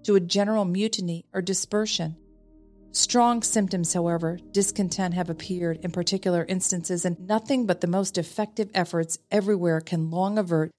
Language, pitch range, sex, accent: English, 170-210 Hz, female, American